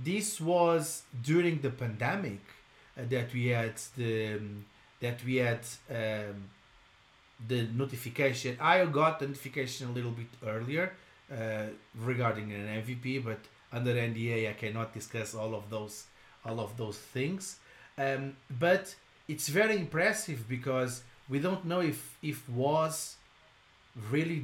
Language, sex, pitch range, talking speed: English, male, 115-135 Hz, 135 wpm